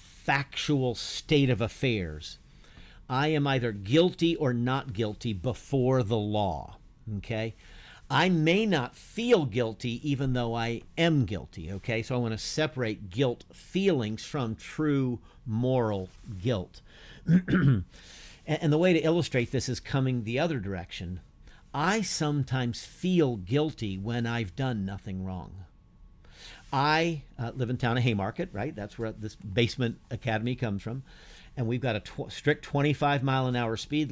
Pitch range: 105-140 Hz